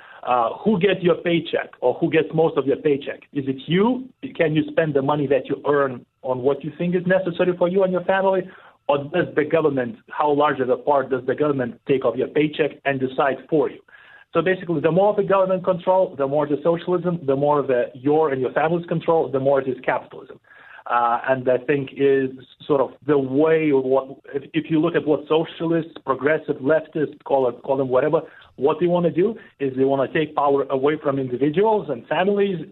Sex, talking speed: male, 215 wpm